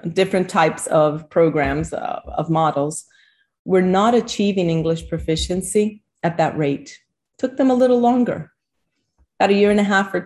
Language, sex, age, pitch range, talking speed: English, female, 30-49, 160-210 Hz, 160 wpm